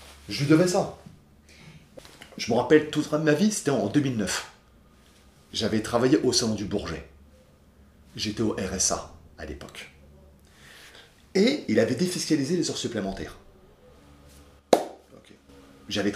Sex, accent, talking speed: male, French, 120 wpm